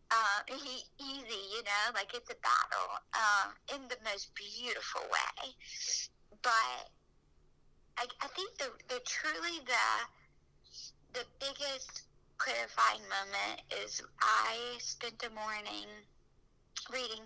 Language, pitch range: English, 200-245 Hz